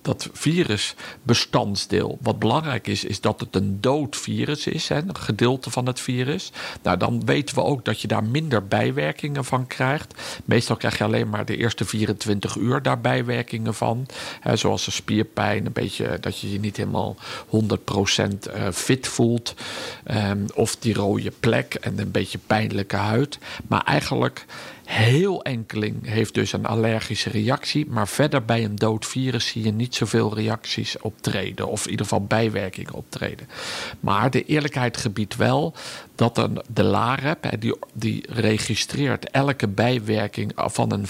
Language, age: Dutch, 50-69